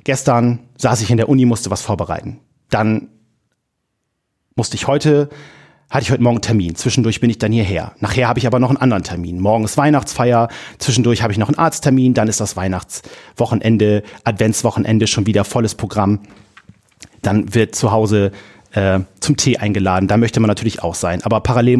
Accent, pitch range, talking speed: German, 105-130 Hz, 180 wpm